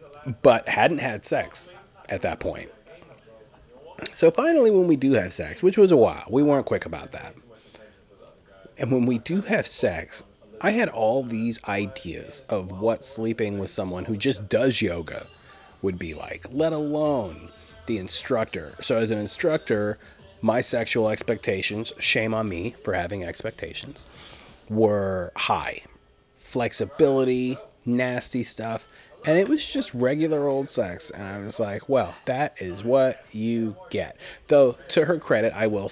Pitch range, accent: 105-150 Hz, American